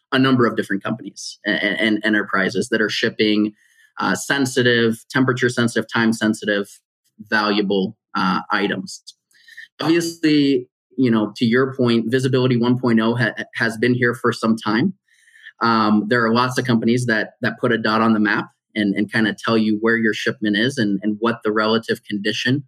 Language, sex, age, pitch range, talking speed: English, male, 20-39, 110-125 Hz, 165 wpm